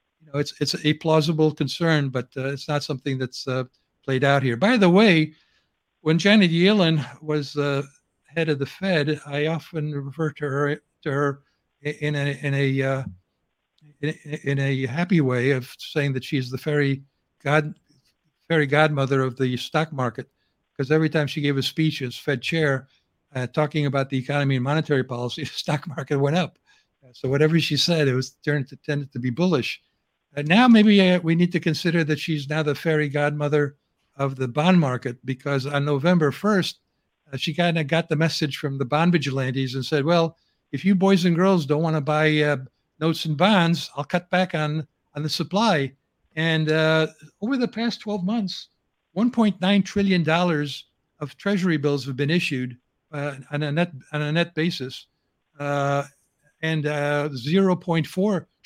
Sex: male